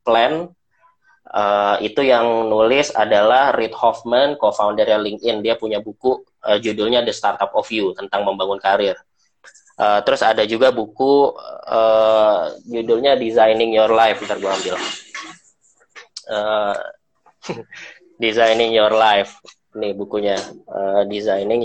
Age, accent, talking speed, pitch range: 20-39, native, 120 wpm, 105-175 Hz